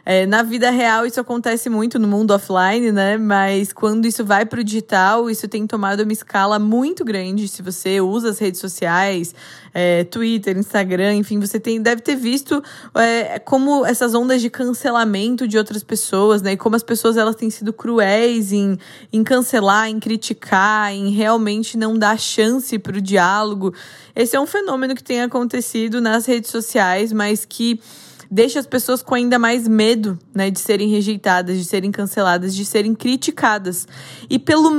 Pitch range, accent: 195-240 Hz, Brazilian